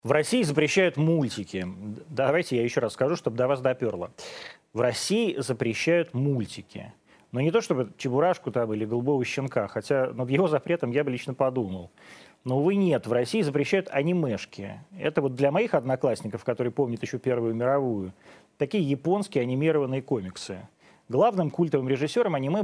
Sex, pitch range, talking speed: male, 115-165 Hz, 155 wpm